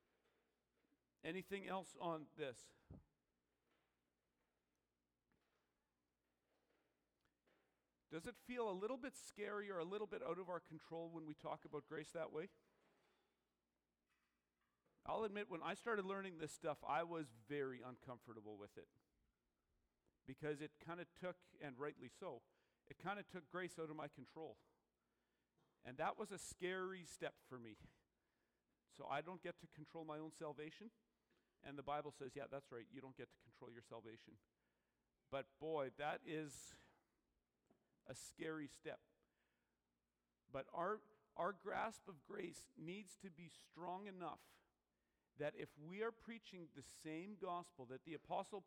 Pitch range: 110-180 Hz